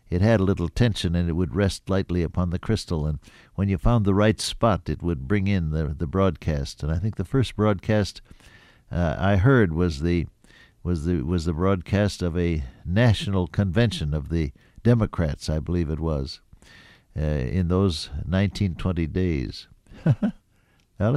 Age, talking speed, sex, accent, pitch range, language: 60-79, 170 wpm, male, American, 85-105 Hz, English